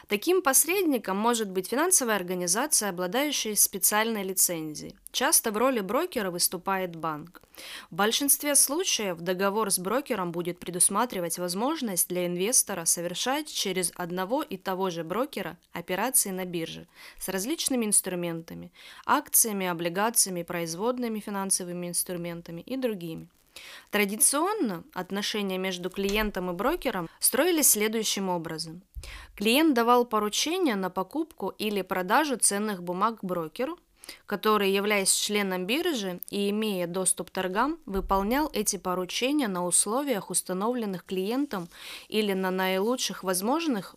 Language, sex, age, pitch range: Russian, female, 20-39, 185-250 Hz